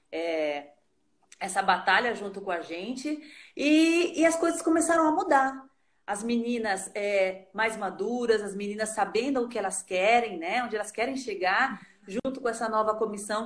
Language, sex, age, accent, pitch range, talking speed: Portuguese, female, 30-49, Brazilian, 200-275 Hz, 150 wpm